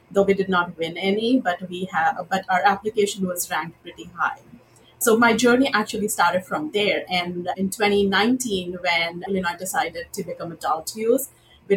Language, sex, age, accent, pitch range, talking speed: English, female, 30-49, Indian, 180-210 Hz, 180 wpm